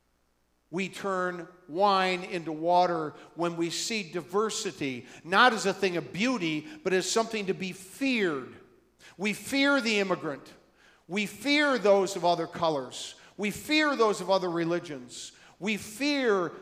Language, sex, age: English, male, 50-69